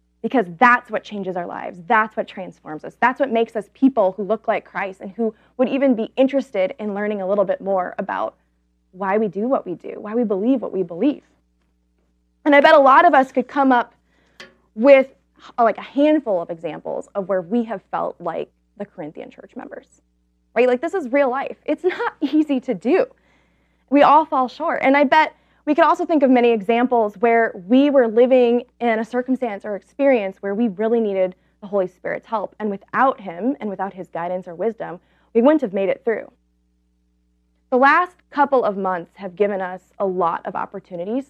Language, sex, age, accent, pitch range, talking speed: English, female, 20-39, American, 185-260 Hz, 200 wpm